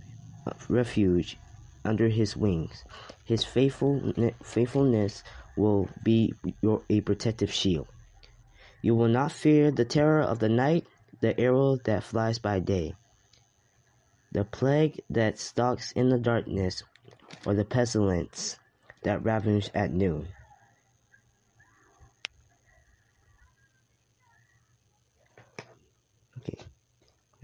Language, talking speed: English, 95 wpm